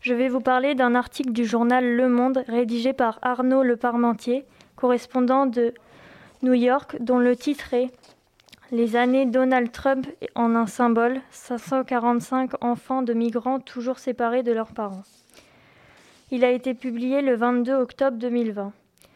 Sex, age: female, 20-39